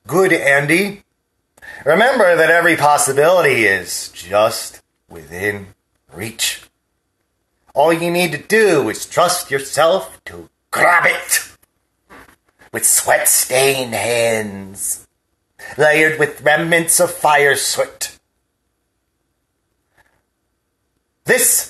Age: 30-49